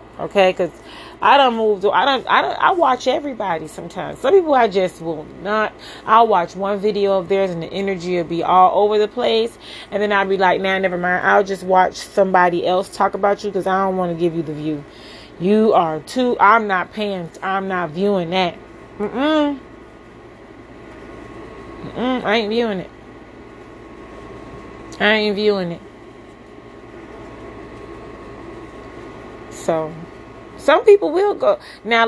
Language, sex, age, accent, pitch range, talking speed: English, female, 30-49, American, 175-220 Hz, 165 wpm